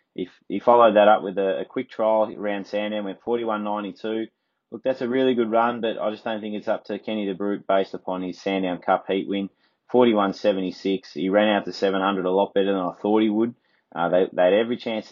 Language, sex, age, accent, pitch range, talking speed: English, male, 20-39, Australian, 95-110 Hz, 220 wpm